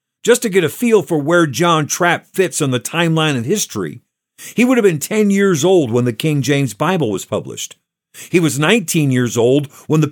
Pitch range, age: 140-185 Hz, 50-69